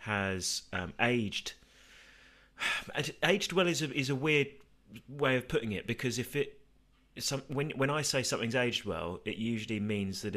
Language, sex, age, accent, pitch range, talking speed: English, male, 30-49, British, 100-120 Hz, 170 wpm